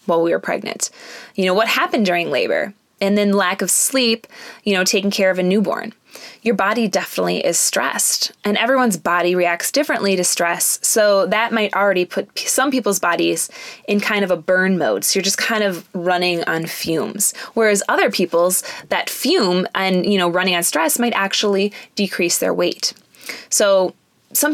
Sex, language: female, English